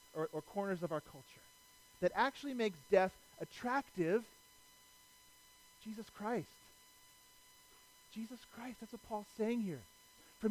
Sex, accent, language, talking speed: male, American, English, 120 wpm